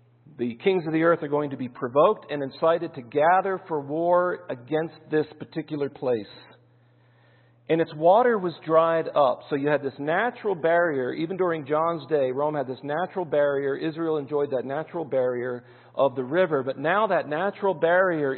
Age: 50-69